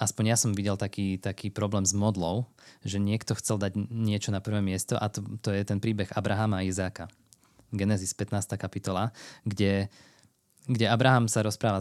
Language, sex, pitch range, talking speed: Slovak, male, 95-115 Hz, 175 wpm